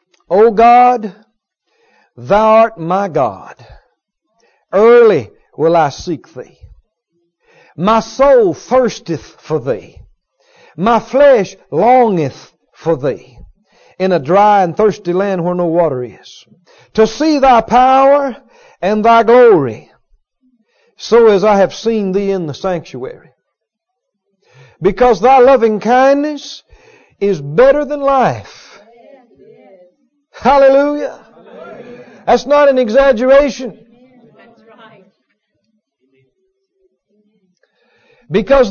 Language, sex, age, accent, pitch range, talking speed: English, male, 50-69, American, 195-265 Hz, 100 wpm